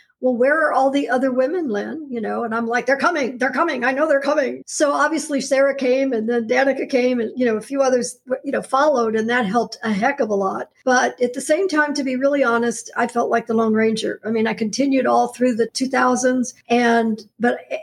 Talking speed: 240 wpm